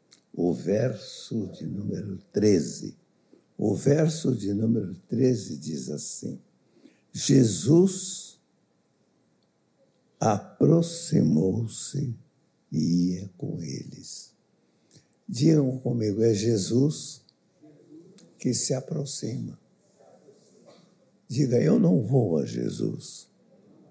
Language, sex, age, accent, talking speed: Portuguese, male, 60-79, Brazilian, 80 wpm